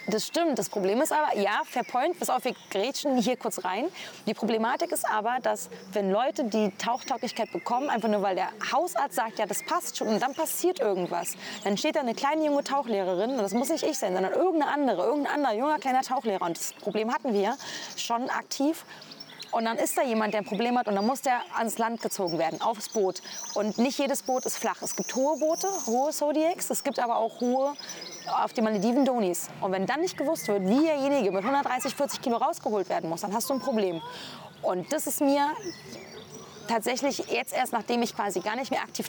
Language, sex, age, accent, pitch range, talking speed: German, female, 30-49, German, 200-275 Hz, 215 wpm